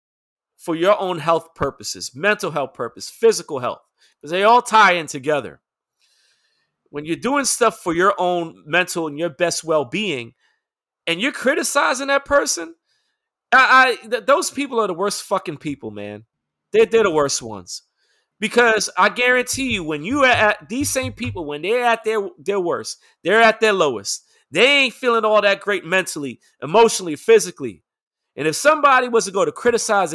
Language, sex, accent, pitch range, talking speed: English, male, American, 155-225 Hz, 170 wpm